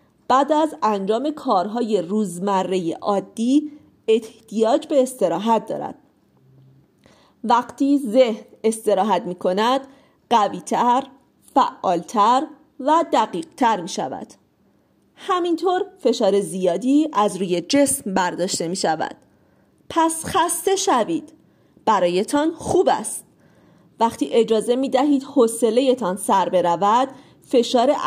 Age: 40-59